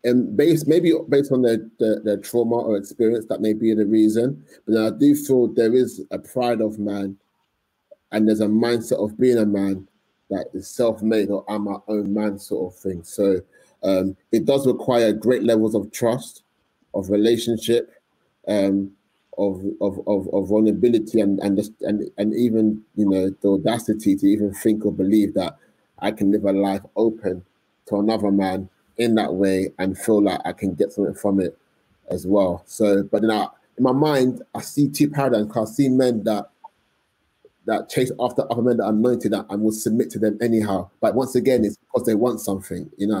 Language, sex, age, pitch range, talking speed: English, male, 30-49, 100-115 Hz, 195 wpm